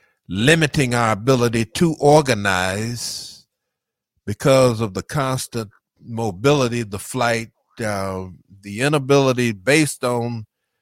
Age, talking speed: 50-69, 95 wpm